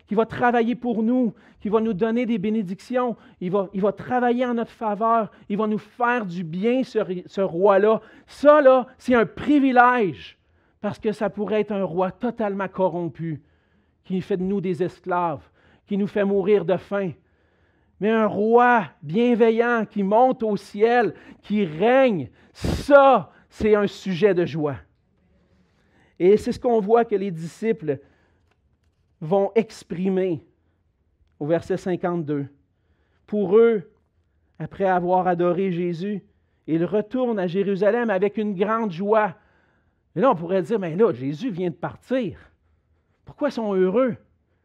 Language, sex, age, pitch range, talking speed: French, male, 40-59, 155-225 Hz, 145 wpm